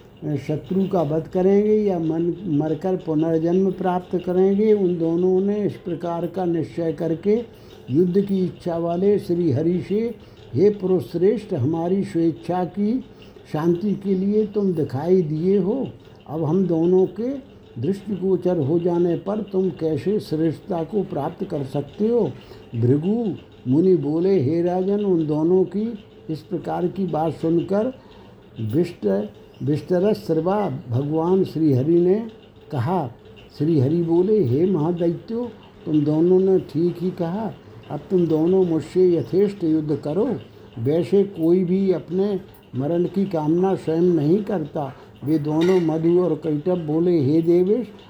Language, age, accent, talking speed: Hindi, 60-79, native, 135 wpm